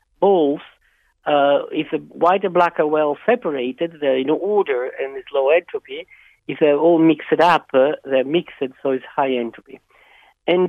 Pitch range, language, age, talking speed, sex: 145-205 Hz, English, 50-69, 175 wpm, male